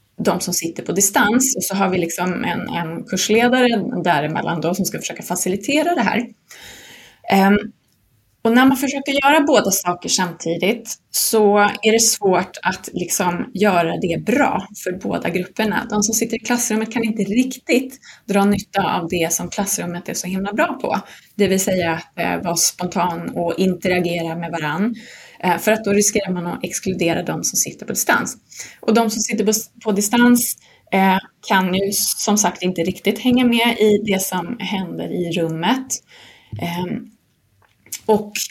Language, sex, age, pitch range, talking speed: Swedish, female, 20-39, 180-230 Hz, 155 wpm